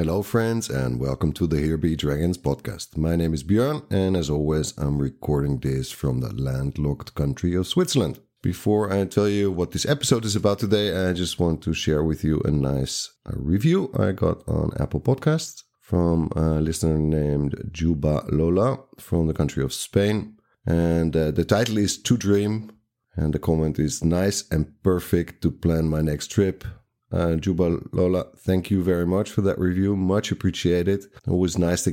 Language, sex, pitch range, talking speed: English, male, 80-105 Hz, 180 wpm